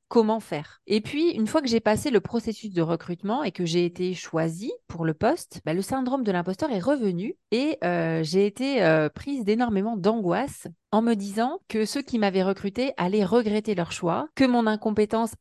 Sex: female